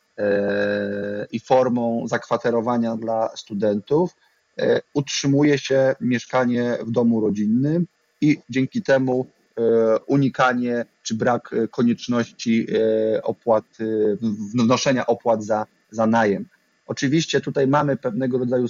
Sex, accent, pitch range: male, native, 115-130 Hz